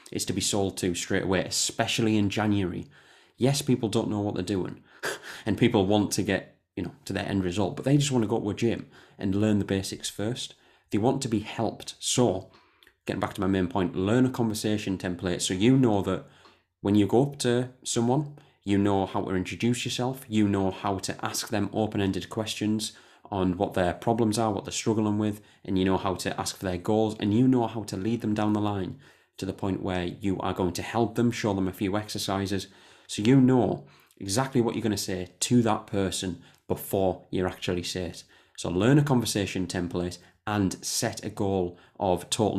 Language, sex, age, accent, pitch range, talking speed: English, male, 20-39, British, 95-115 Hz, 215 wpm